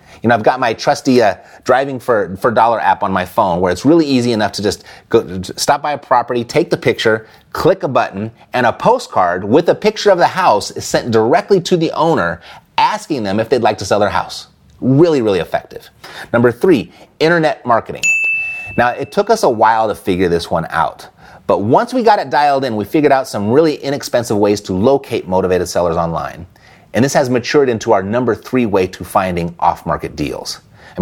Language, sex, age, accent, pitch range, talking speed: English, male, 30-49, American, 110-160 Hz, 205 wpm